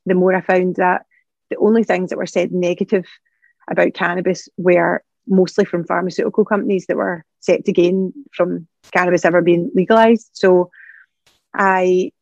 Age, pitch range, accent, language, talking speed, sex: 30-49, 175-195 Hz, British, English, 150 wpm, female